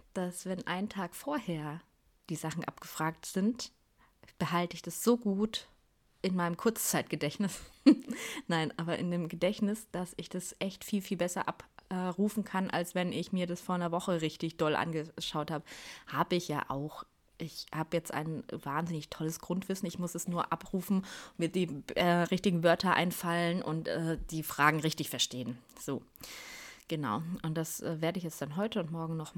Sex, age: female, 20-39